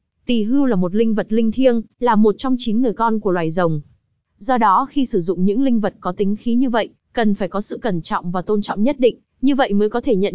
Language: Vietnamese